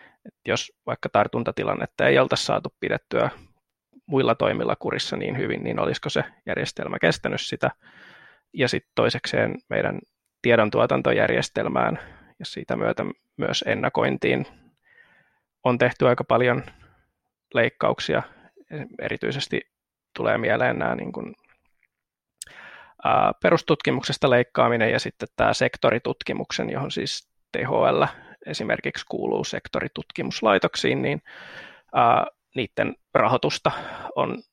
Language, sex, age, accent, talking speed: Finnish, male, 20-39, native, 95 wpm